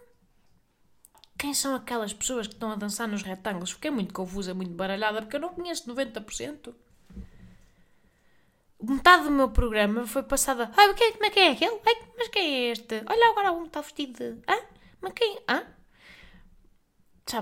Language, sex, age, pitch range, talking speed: Portuguese, female, 20-39, 210-295 Hz, 165 wpm